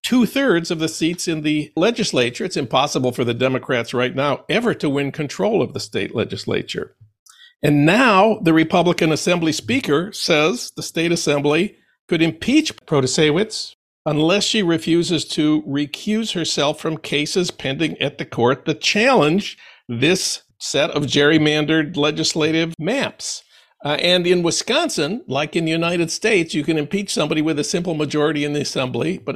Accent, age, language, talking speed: American, 50-69, English, 155 wpm